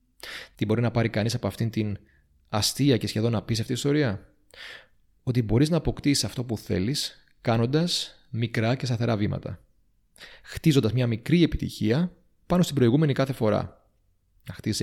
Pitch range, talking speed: 105-145 Hz, 155 wpm